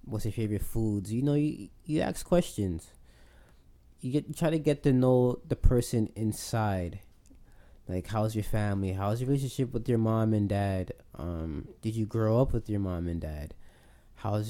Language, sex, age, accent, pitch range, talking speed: English, male, 20-39, American, 100-125 Hz, 180 wpm